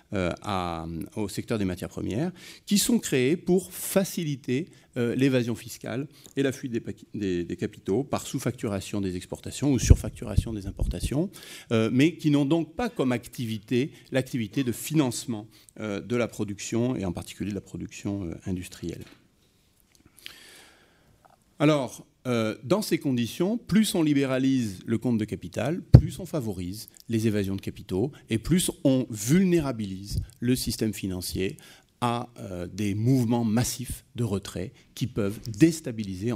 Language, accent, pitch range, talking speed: French, French, 100-135 Hz, 140 wpm